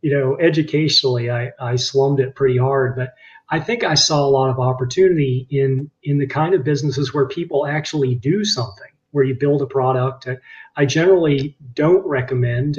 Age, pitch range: 30-49, 120-145 Hz